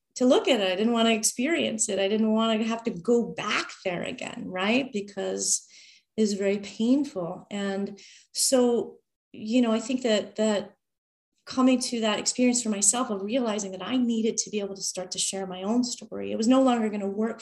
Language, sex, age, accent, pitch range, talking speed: English, female, 30-49, American, 195-225 Hz, 215 wpm